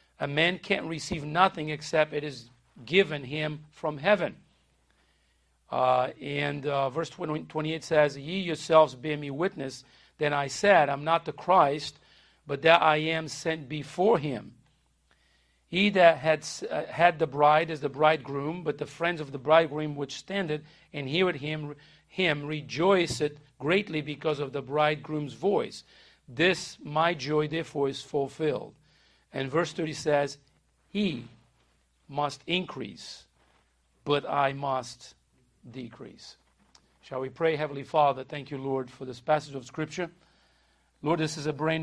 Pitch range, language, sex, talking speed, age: 135-155 Hz, English, male, 145 wpm, 50-69